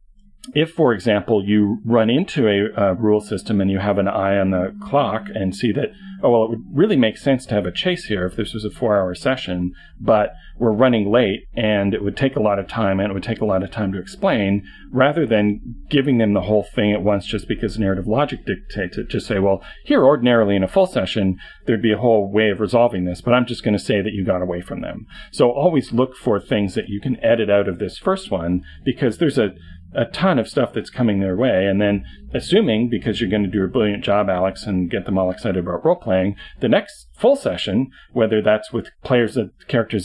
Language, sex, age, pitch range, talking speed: English, male, 40-59, 95-115 Hz, 240 wpm